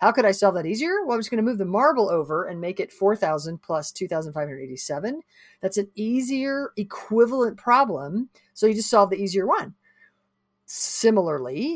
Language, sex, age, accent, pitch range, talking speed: English, female, 50-69, American, 160-215 Hz, 175 wpm